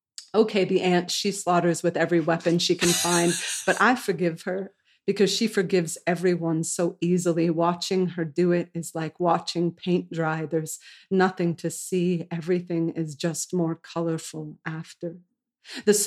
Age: 40-59